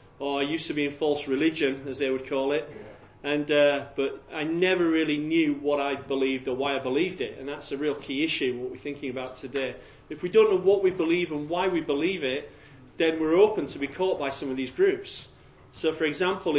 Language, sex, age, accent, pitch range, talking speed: English, male, 40-59, British, 135-170 Hz, 235 wpm